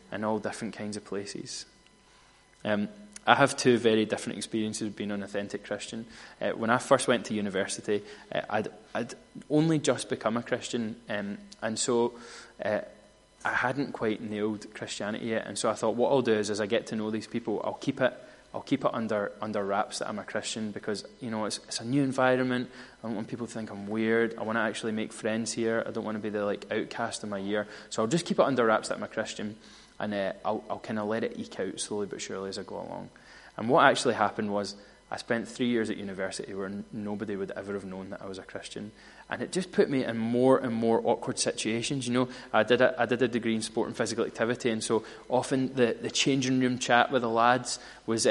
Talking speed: 240 wpm